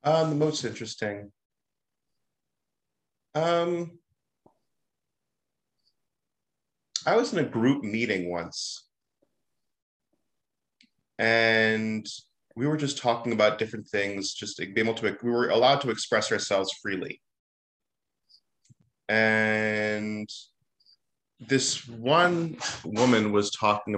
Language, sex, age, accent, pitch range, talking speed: English, male, 30-49, American, 105-130 Hz, 95 wpm